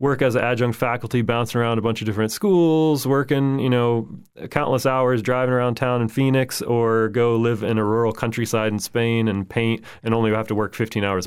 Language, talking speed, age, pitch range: English, 215 wpm, 30-49, 110-125 Hz